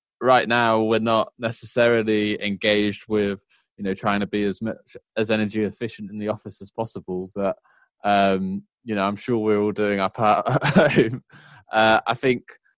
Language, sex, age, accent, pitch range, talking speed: English, male, 20-39, British, 100-120 Hz, 180 wpm